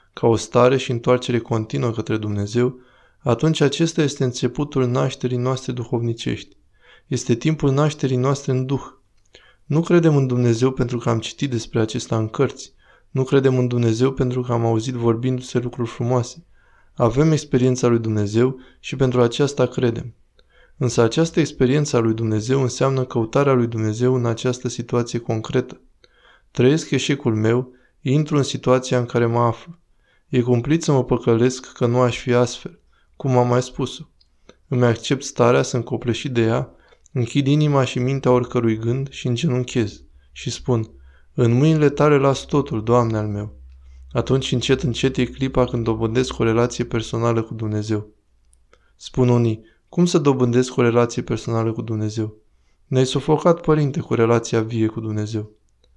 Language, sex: Romanian, male